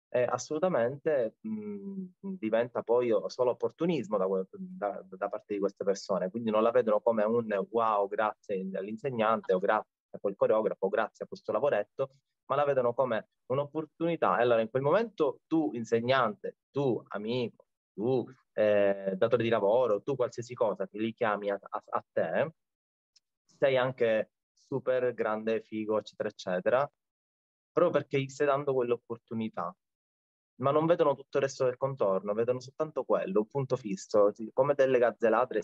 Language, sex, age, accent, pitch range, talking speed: Italian, male, 20-39, native, 105-140 Hz, 155 wpm